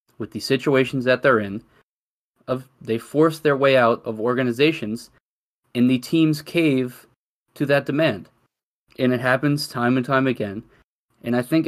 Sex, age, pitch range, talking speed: male, 20-39, 115-140 Hz, 155 wpm